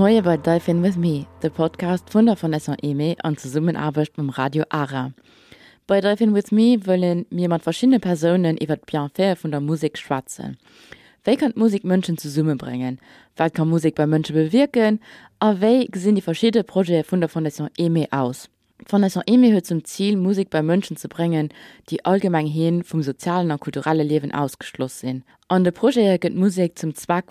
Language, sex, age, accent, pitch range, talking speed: English, female, 20-39, German, 155-190 Hz, 180 wpm